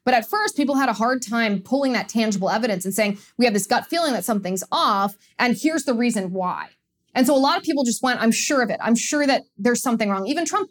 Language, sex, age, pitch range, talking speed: English, female, 20-39, 200-245 Hz, 265 wpm